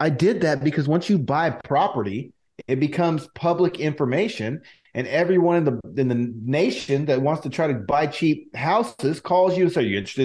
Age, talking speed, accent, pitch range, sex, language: 40-59, 195 wpm, American, 125-165 Hz, male, English